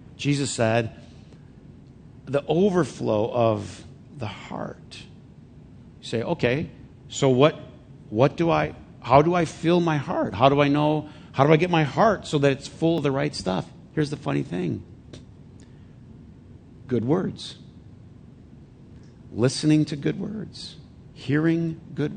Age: 50-69